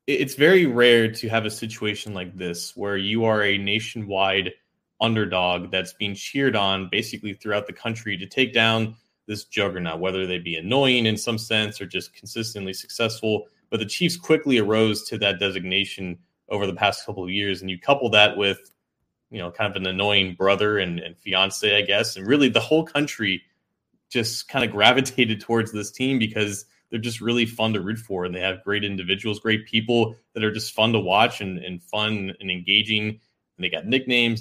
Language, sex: English, male